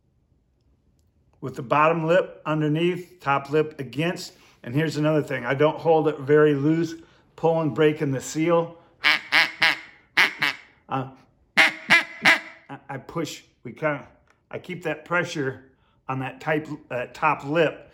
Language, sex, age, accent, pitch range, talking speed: English, male, 50-69, American, 140-160 Hz, 125 wpm